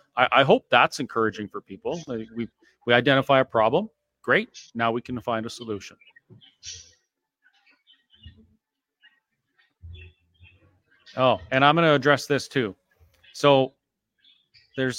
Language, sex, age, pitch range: English, male, 40-59, 110-140 Hz